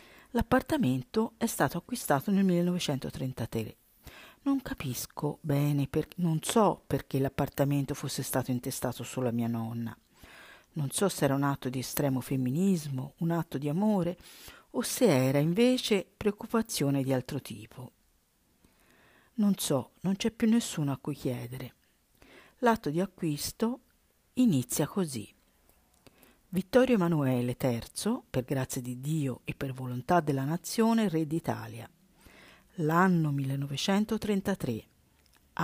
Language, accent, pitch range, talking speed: Italian, native, 130-200 Hz, 120 wpm